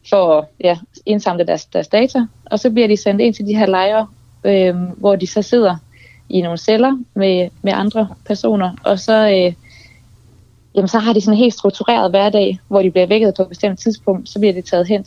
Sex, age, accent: female, 20-39, native